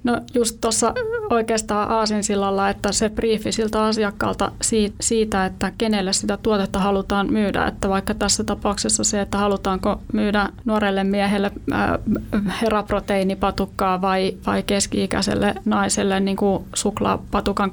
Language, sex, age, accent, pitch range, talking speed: Finnish, female, 30-49, native, 195-215 Hz, 110 wpm